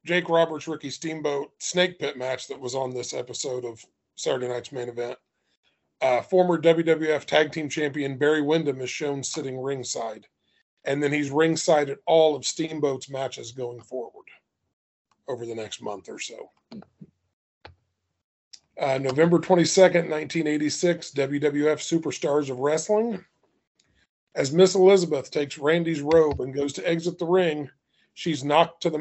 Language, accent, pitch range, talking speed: English, American, 140-170 Hz, 145 wpm